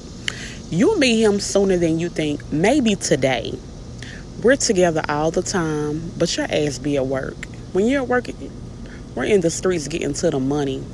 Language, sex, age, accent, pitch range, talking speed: English, female, 30-49, American, 140-170 Hz, 170 wpm